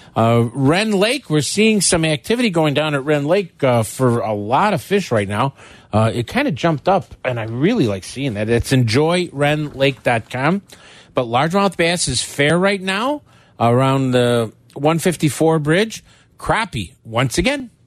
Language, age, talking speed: English, 50-69, 160 wpm